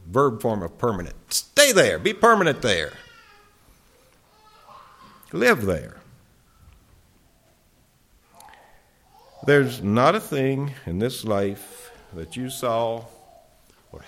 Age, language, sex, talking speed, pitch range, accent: 60-79, English, male, 95 wpm, 90-120 Hz, American